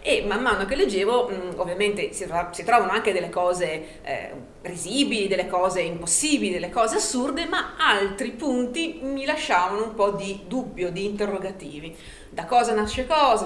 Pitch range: 180-220 Hz